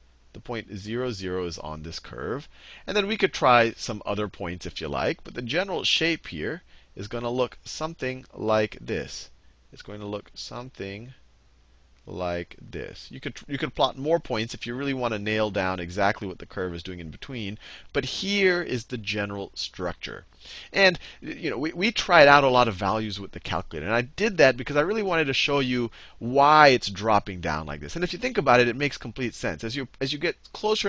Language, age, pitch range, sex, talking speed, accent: English, 40-59, 105-155 Hz, male, 220 wpm, American